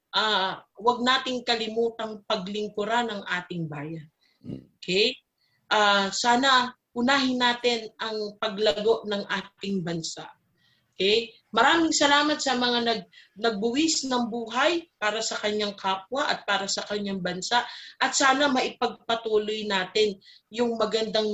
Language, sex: Filipino, female